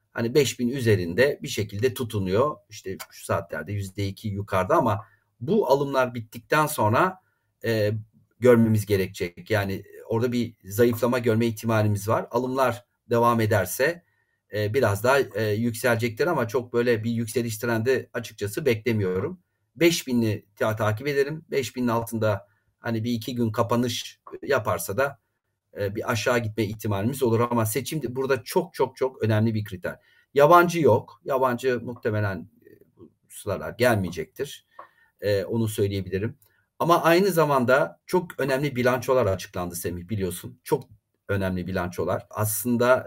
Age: 40-59